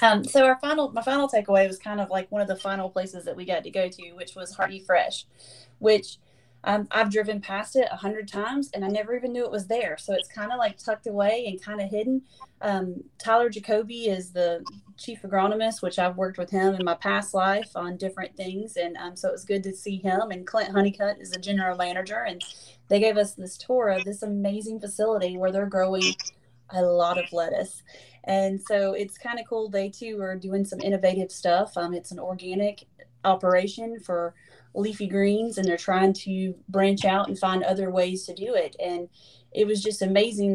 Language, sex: English, female